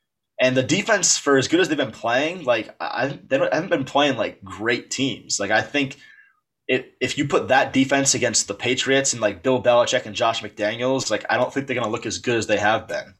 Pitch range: 105-130 Hz